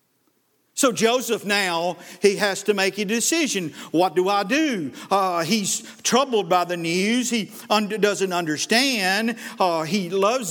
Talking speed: 150 wpm